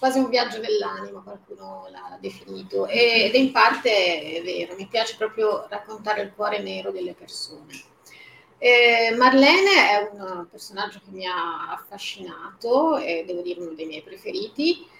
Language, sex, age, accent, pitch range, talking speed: Italian, female, 30-49, native, 180-245 Hz, 150 wpm